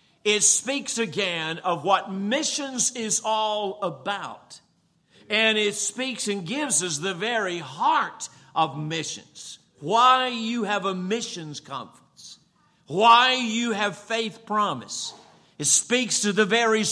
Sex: male